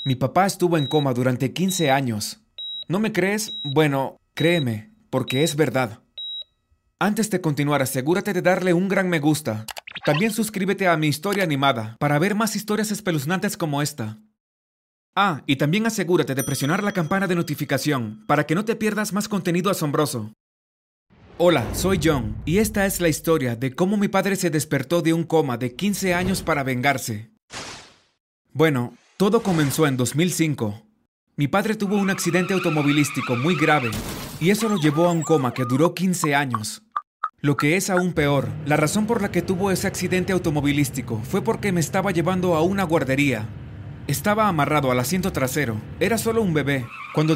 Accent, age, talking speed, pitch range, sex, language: Mexican, 30-49, 170 wpm, 135-185 Hz, male, Spanish